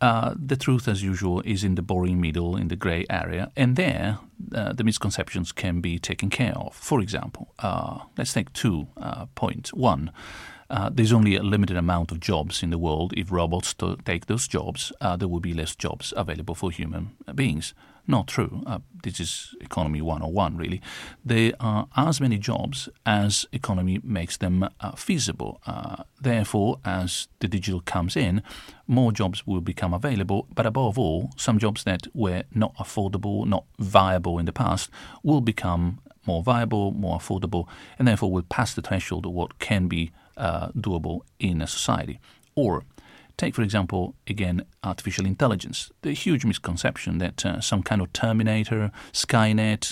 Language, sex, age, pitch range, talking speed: English, male, 40-59, 90-115 Hz, 170 wpm